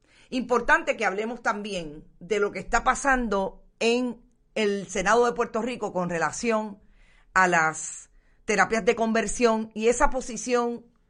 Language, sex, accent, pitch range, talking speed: Spanish, female, American, 180-235 Hz, 135 wpm